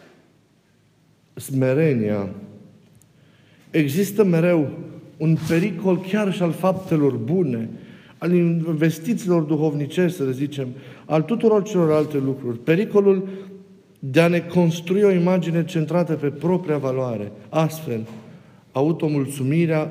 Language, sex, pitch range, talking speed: Romanian, male, 130-170 Hz, 100 wpm